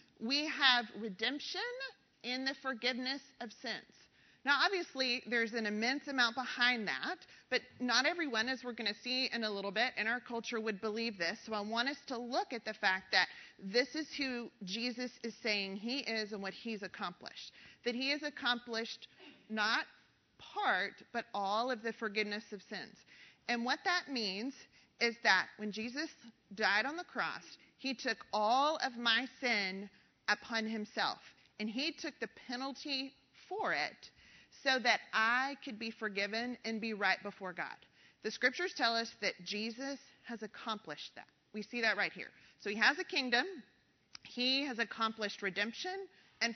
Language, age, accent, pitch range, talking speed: English, 40-59, American, 220-265 Hz, 170 wpm